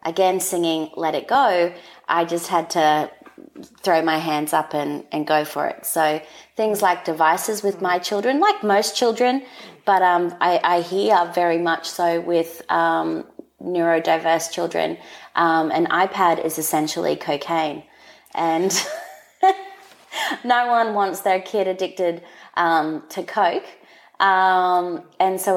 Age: 20-39